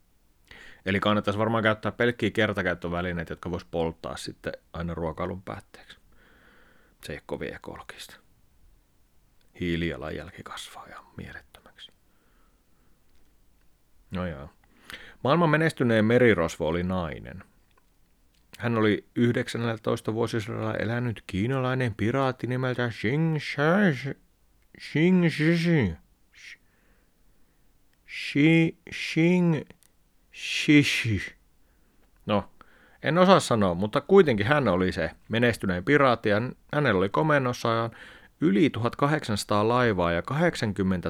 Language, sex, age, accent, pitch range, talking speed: Finnish, male, 30-49, native, 90-125 Hz, 90 wpm